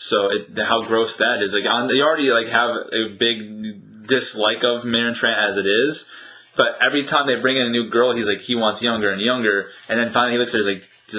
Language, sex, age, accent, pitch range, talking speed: English, male, 20-39, American, 105-120 Hz, 230 wpm